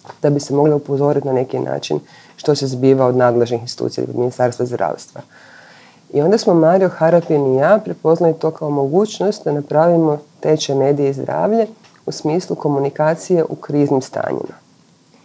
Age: 40-59